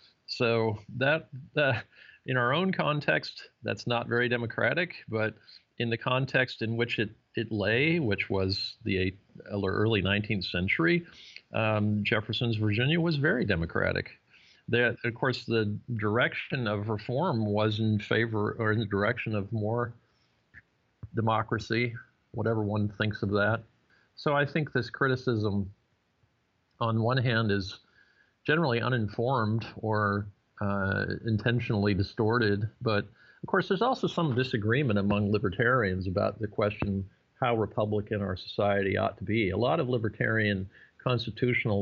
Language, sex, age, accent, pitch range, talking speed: English, male, 50-69, American, 100-120 Hz, 135 wpm